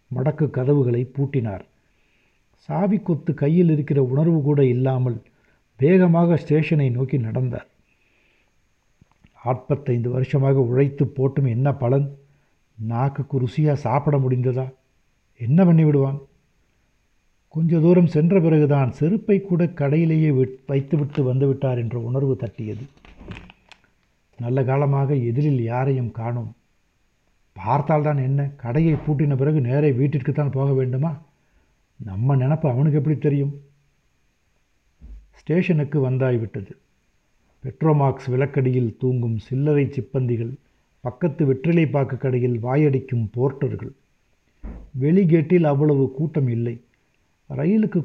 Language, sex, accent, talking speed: Tamil, male, native, 90 wpm